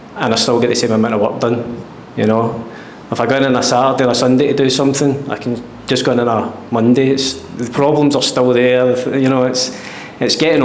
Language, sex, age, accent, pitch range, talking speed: English, male, 20-39, British, 120-135 Hz, 250 wpm